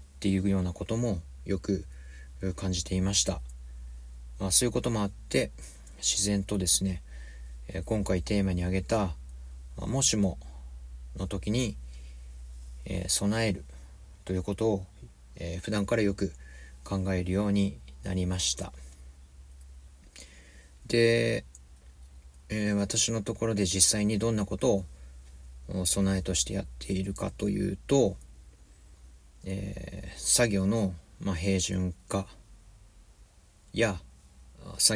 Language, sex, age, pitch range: Japanese, male, 40-59, 65-100 Hz